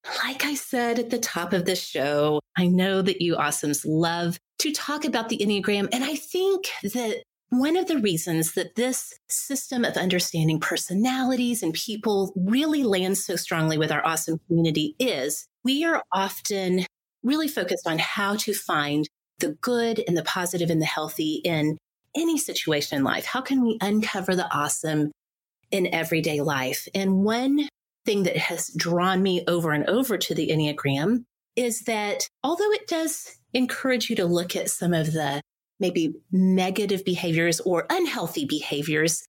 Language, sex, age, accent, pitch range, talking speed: English, female, 30-49, American, 160-230 Hz, 165 wpm